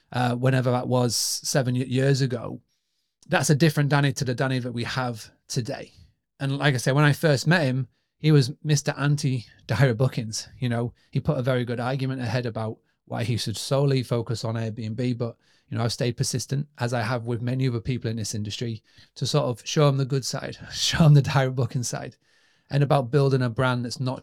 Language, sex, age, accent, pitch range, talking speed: English, male, 30-49, British, 120-140 Hz, 215 wpm